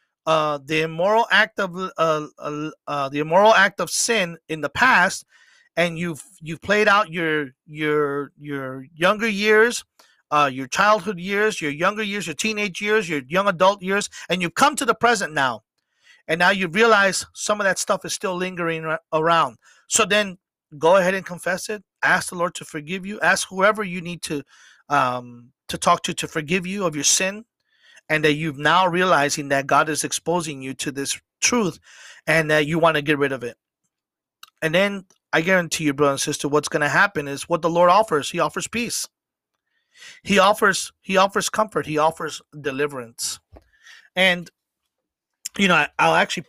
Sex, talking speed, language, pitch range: male, 185 wpm, English, 150-195 Hz